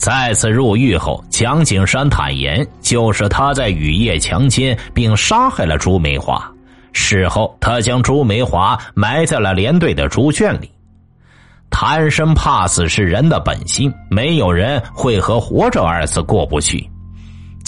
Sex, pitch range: male, 95-130 Hz